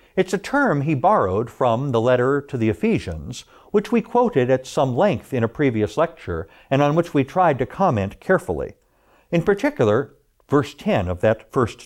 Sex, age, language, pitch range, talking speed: male, 60-79, English, 115-175 Hz, 180 wpm